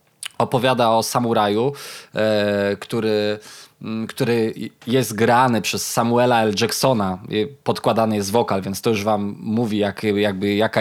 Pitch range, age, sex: 110-125 Hz, 20-39, male